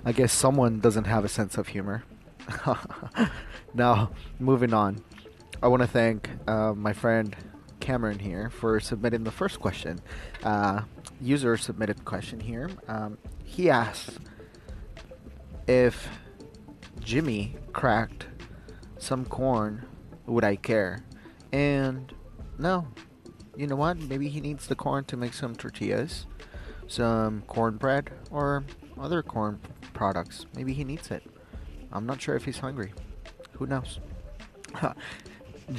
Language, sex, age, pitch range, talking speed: English, male, 20-39, 105-130 Hz, 120 wpm